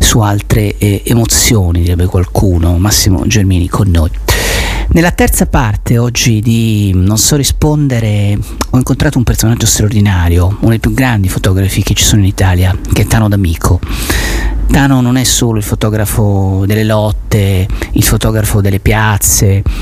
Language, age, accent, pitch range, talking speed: Italian, 40-59, native, 100-120 Hz, 150 wpm